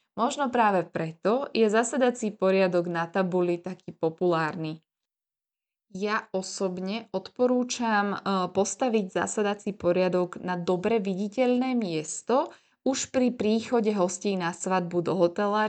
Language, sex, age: Slovak, female, 20-39